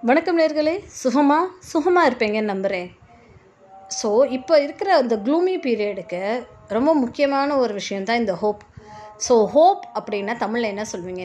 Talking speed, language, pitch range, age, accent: 130 wpm, Tamil, 210-280 Hz, 20-39, native